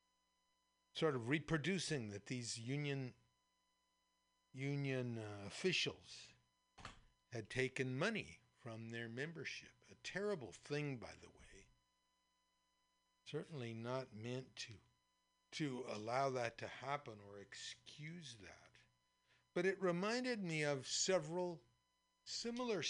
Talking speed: 105 wpm